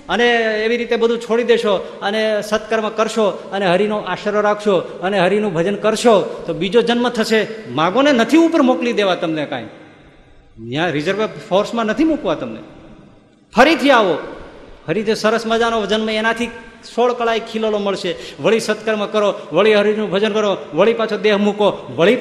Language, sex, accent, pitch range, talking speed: Gujarati, male, native, 180-255 Hz, 155 wpm